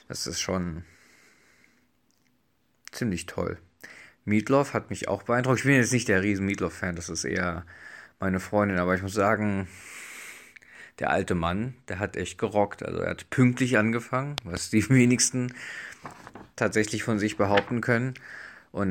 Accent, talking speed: German, 150 wpm